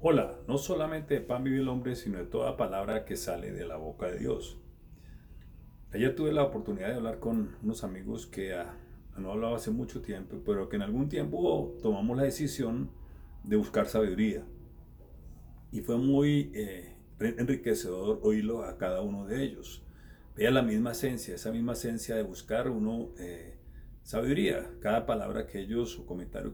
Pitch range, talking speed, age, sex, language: 90-125 Hz, 170 wpm, 40-59, male, Spanish